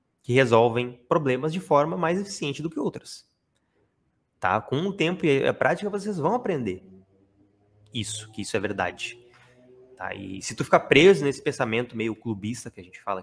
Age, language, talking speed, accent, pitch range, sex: 20-39, Portuguese, 175 wpm, Brazilian, 110-155 Hz, male